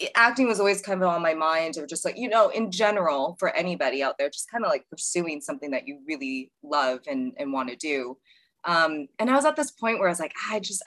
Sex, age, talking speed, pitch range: female, 20-39, 260 wpm, 150-210 Hz